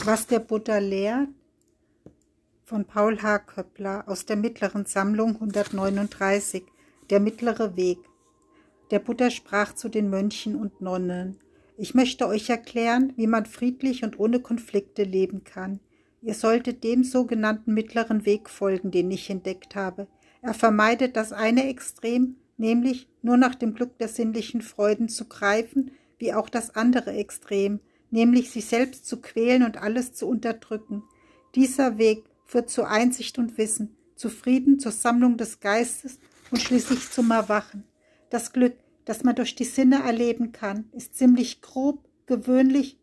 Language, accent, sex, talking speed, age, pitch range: German, German, female, 150 wpm, 60-79, 215-255 Hz